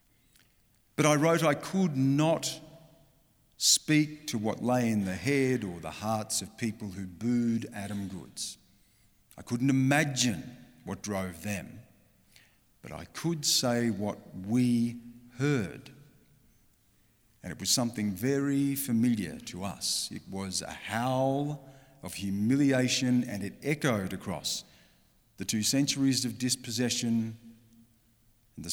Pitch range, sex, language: 105-130 Hz, male, English